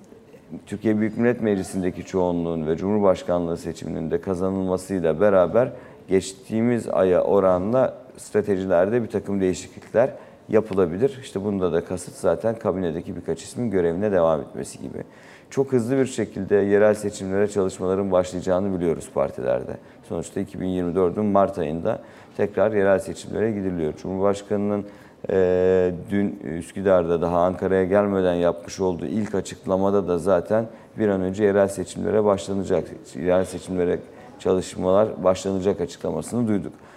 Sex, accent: male, native